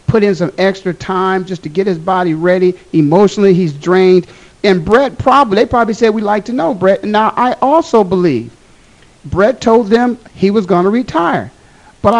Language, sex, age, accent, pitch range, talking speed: English, male, 50-69, American, 190-250 Hz, 185 wpm